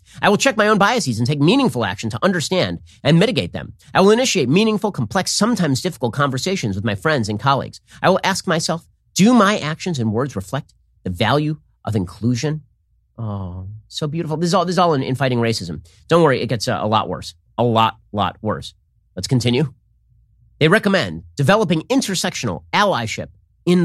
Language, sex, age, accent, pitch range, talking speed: English, male, 40-59, American, 110-175 Hz, 185 wpm